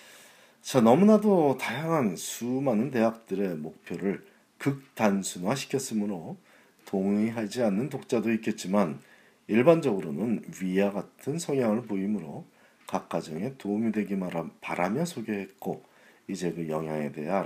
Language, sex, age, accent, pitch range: Korean, male, 40-59, native, 95-140 Hz